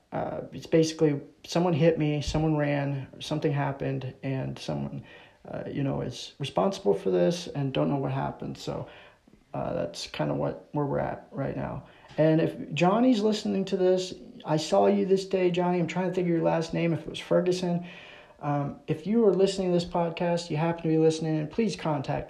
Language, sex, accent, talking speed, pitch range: English, male, American, 195 wpm, 150-170 Hz